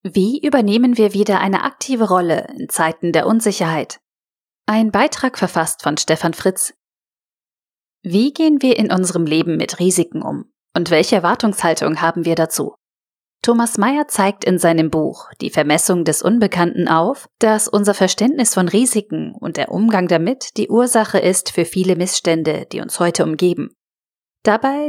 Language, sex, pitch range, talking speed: German, female, 165-220 Hz, 150 wpm